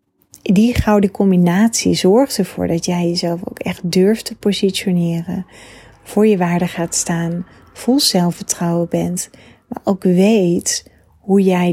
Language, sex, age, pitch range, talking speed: Dutch, female, 30-49, 170-200 Hz, 135 wpm